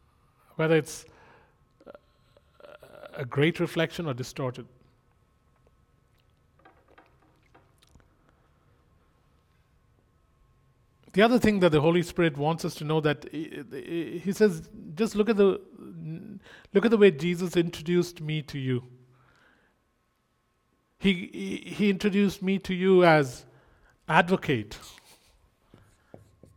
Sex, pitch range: male, 120-170 Hz